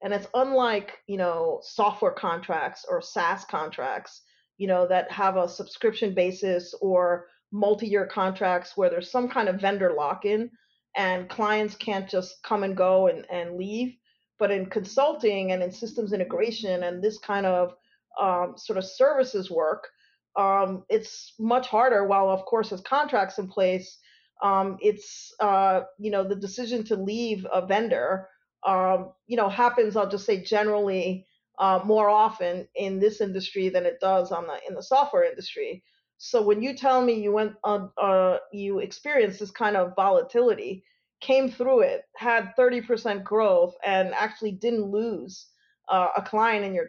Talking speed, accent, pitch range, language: 165 wpm, American, 190-235 Hz, English